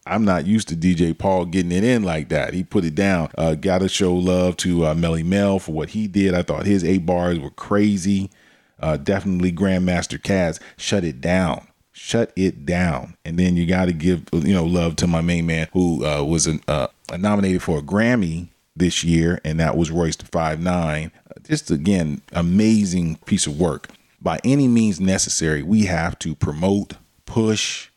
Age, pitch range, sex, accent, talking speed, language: 40-59, 80-95 Hz, male, American, 195 wpm, English